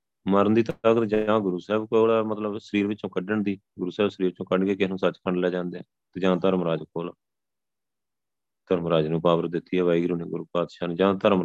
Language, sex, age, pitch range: Punjabi, male, 30-49, 95-110 Hz